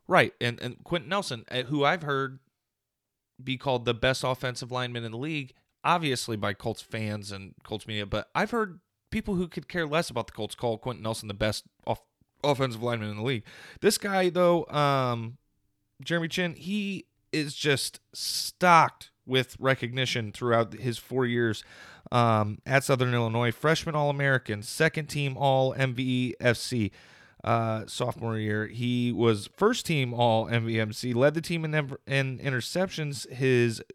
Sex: male